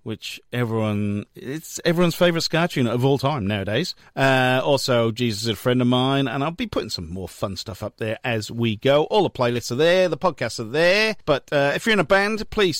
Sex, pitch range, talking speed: male, 115-155 Hz, 225 wpm